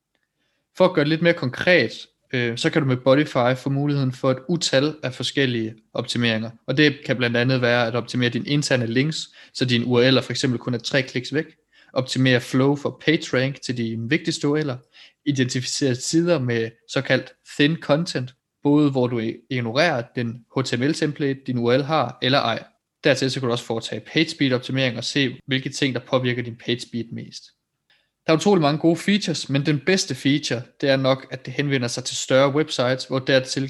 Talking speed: 190 wpm